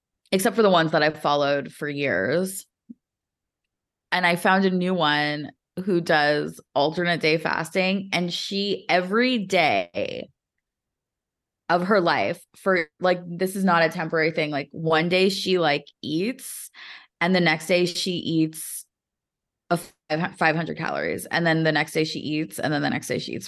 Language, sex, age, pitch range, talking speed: English, female, 20-39, 150-180 Hz, 160 wpm